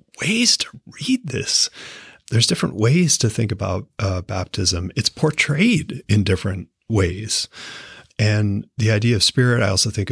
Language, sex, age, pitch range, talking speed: English, male, 30-49, 90-105 Hz, 150 wpm